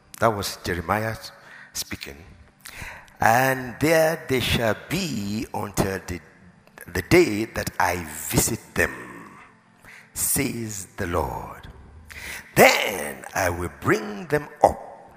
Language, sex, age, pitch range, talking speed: English, male, 60-79, 95-150 Hz, 100 wpm